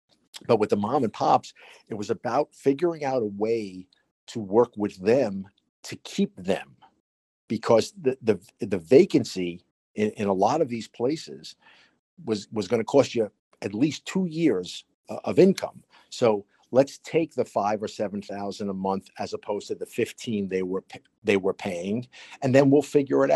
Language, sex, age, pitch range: English, male, 50-69, 105-130 Hz